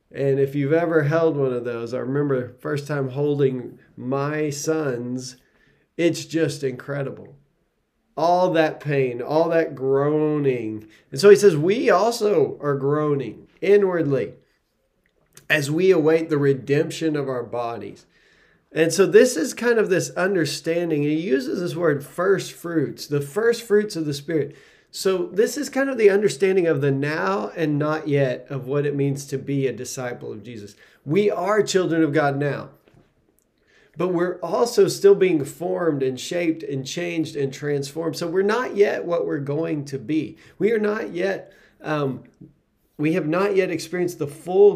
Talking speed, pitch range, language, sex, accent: 165 wpm, 135-175 Hz, English, male, American